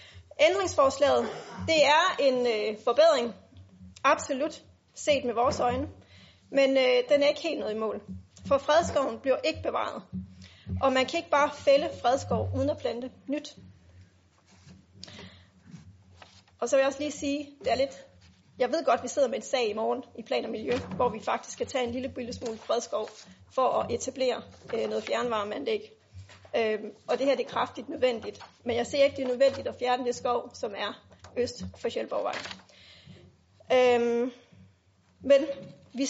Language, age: Danish, 30-49